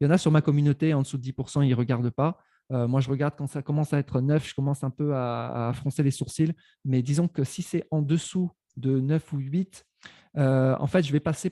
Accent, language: French, French